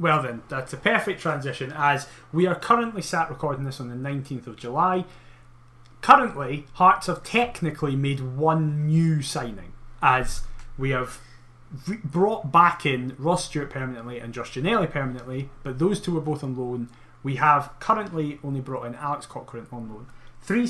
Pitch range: 130-175 Hz